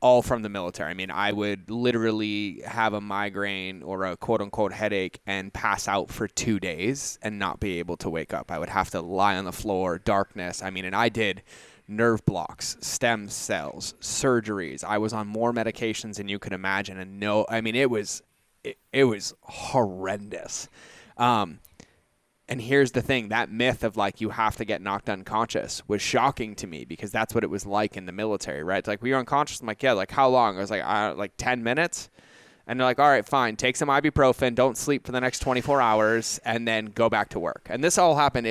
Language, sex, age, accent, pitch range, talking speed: English, male, 20-39, American, 100-125 Hz, 225 wpm